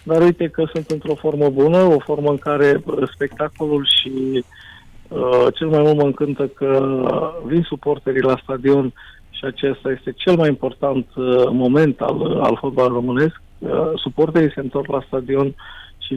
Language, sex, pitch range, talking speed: Romanian, male, 130-165 Hz, 160 wpm